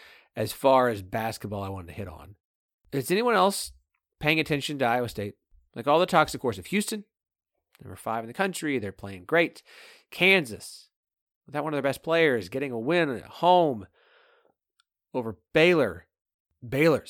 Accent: American